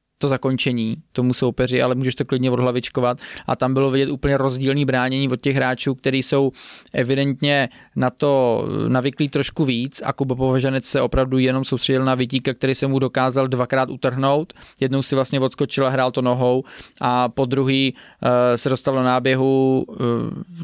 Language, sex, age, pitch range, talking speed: Czech, male, 20-39, 125-135 Hz, 170 wpm